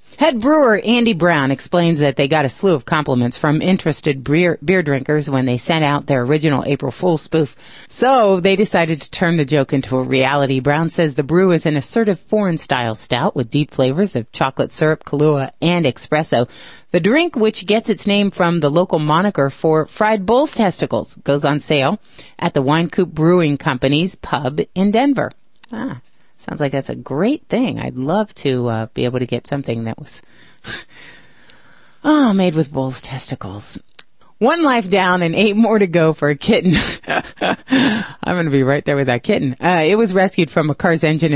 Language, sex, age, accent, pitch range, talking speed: English, female, 40-59, American, 140-185 Hz, 185 wpm